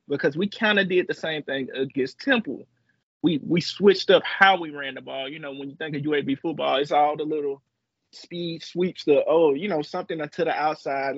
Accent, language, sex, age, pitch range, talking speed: American, English, male, 20-39, 140-180 Hz, 220 wpm